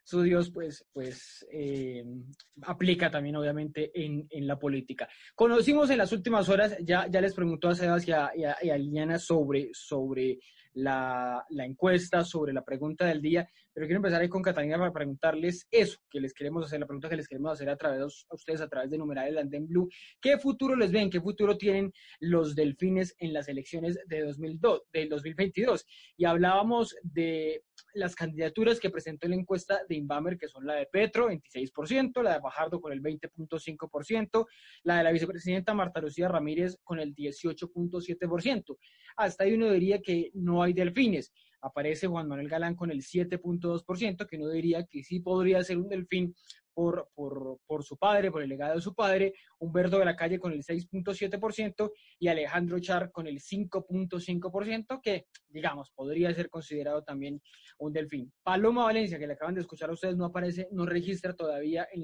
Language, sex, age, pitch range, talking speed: Spanish, male, 20-39, 155-190 Hz, 185 wpm